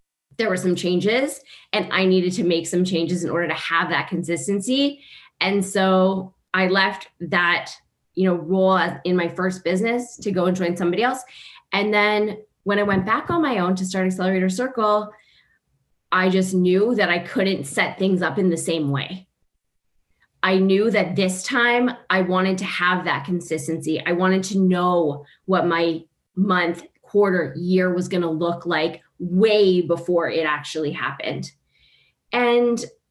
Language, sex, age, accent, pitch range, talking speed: English, female, 20-39, American, 180-220 Hz, 165 wpm